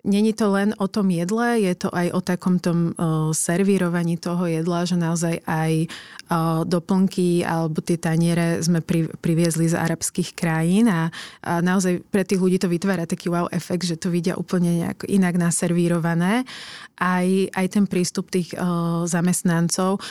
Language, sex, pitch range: Slovak, female, 170-190 Hz